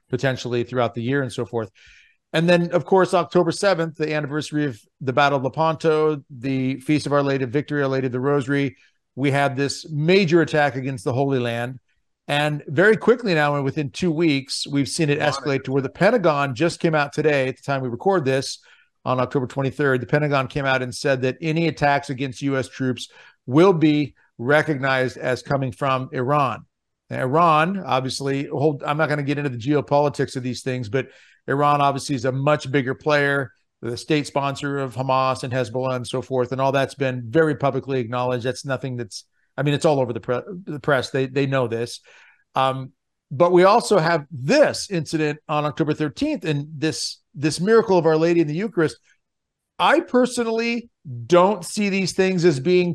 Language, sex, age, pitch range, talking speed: English, male, 50-69, 130-160 Hz, 195 wpm